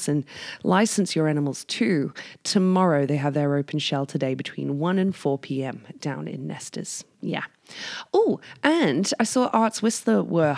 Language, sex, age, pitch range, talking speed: English, female, 20-39, 145-190 Hz, 160 wpm